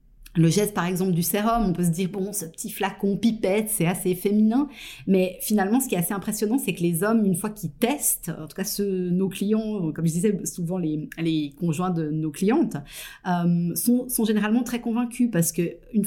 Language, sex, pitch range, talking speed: French, female, 165-205 Hz, 215 wpm